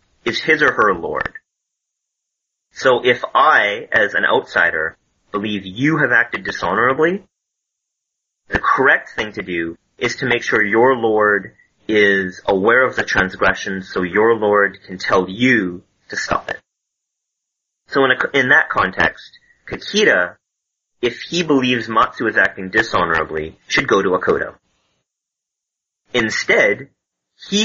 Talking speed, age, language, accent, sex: 130 wpm, 30-49, English, American, male